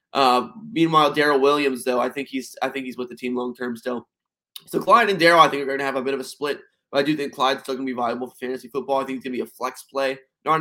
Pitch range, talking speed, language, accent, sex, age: 125-150 Hz, 310 wpm, English, American, male, 20-39